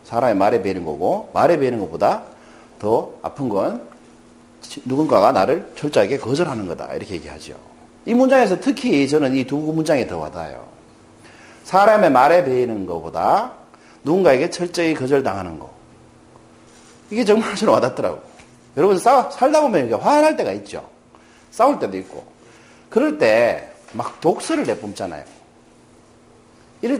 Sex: male